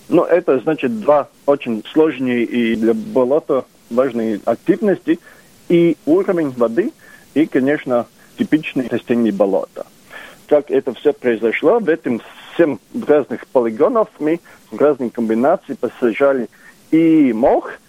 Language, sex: Russian, male